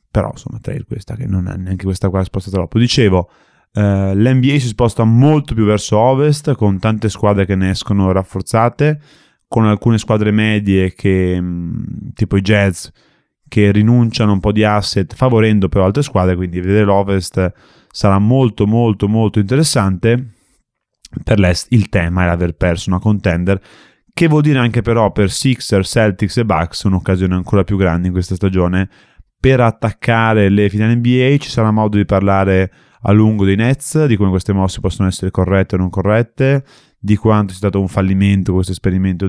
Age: 20-39